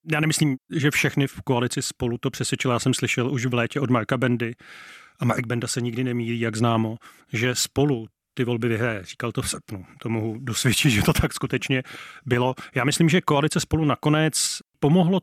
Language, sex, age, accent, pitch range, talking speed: Czech, male, 30-49, native, 130-160 Hz, 195 wpm